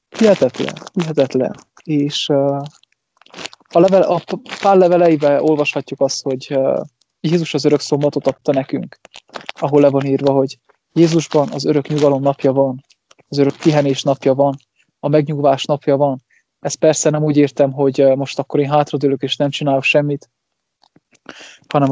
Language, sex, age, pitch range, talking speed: English, male, 20-39, 130-150 Hz, 140 wpm